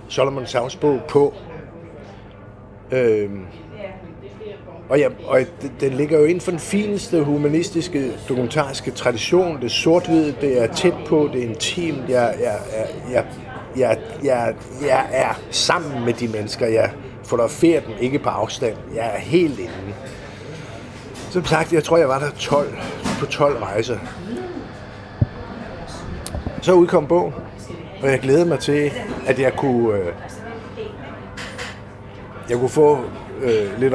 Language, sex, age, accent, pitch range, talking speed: Danish, male, 60-79, native, 105-150 Hz, 130 wpm